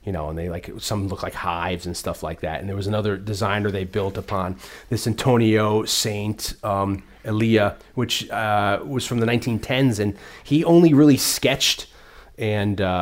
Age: 30-49